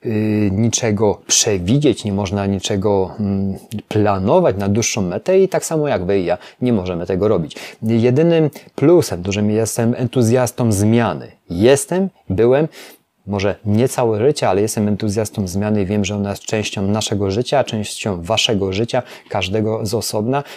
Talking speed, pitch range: 145 wpm, 105-120 Hz